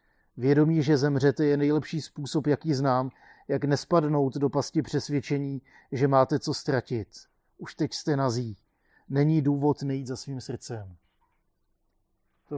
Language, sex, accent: Czech, male, native